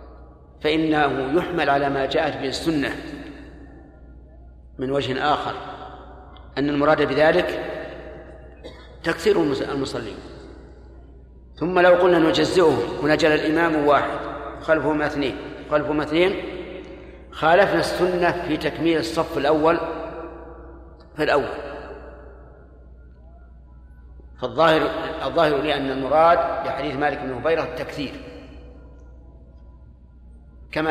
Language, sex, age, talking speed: Arabic, male, 50-69, 85 wpm